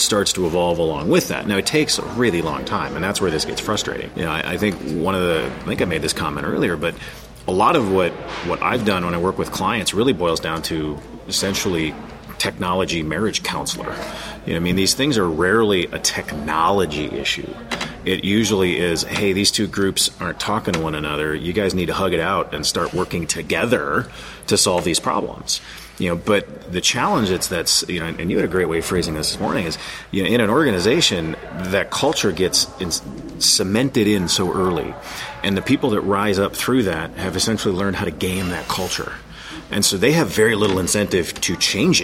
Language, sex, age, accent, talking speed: English, male, 30-49, American, 215 wpm